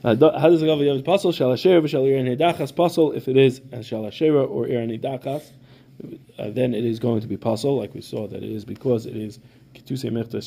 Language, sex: English, male